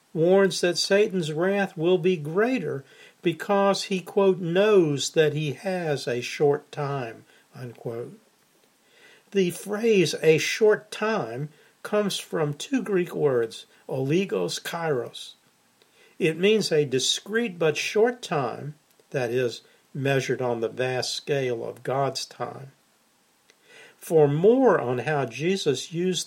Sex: male